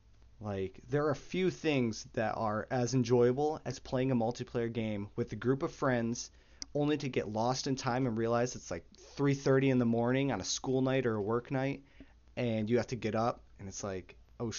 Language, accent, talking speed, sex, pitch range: English, American, 215 wpm, male, 95-130 Hz